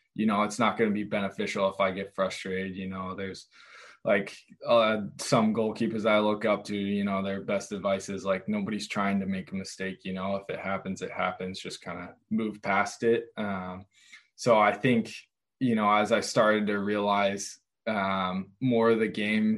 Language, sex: English, male